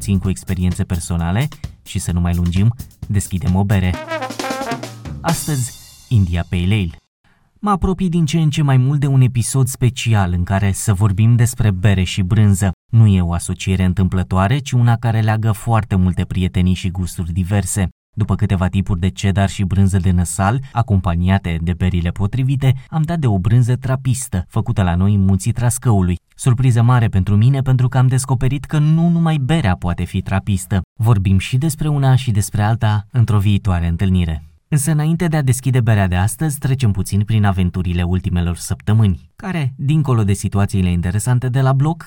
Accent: native